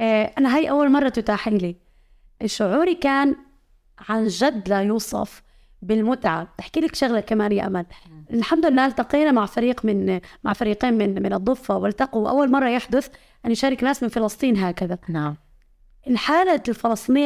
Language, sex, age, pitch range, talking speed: Arabic, female, 20-39, 210-265 Hz, 150 wpm